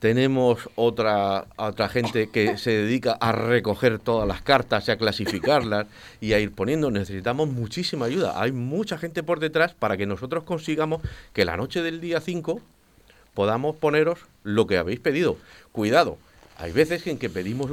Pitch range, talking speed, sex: 110-170 Hz, 165 wpm, male